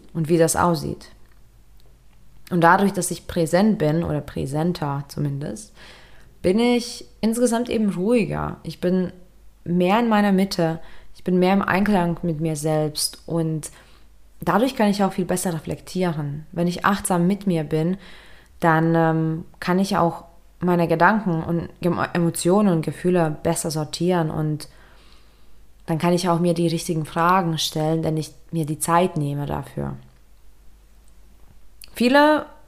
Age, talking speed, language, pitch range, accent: 20-39, 140 wpm, German, 160-195 Hz, German